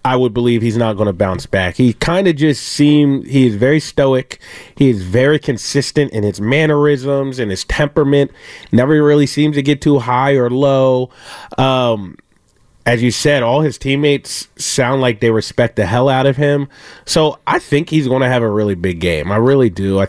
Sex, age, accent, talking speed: male, 30-49, American, 195 wpm